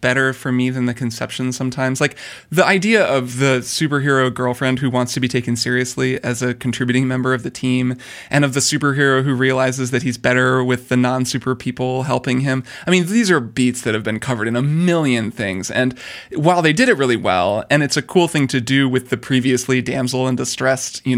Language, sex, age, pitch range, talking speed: English, male, 20-39, 125-140 Hz, 215 wpm